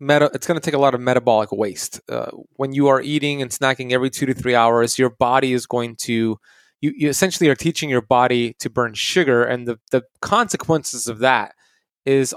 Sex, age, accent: male, 20-39, American